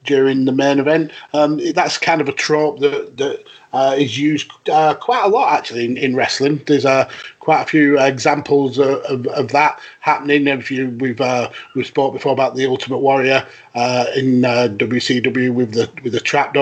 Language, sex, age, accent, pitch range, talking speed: English, male, 30-49, British, 125-145 Hz, 200 wpm